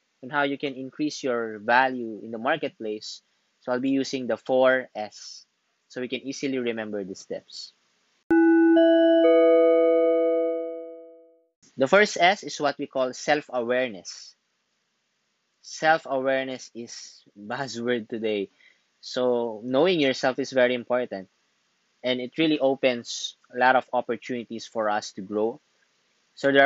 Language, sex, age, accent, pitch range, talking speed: English, male, 20-39, Filipino, 115-145 Hz, 125 wpm